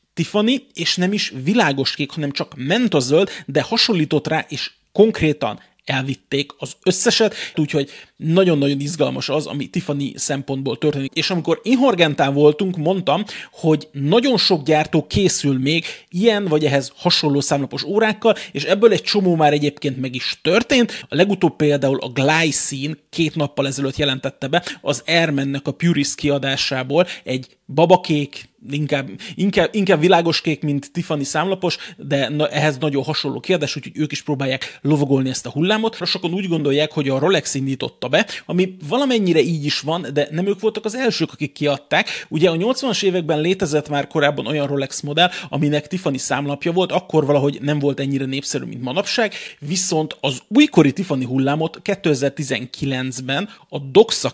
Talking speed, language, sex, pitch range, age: 155 wpm, Hungarian, male, 140-185 Hz, 30-49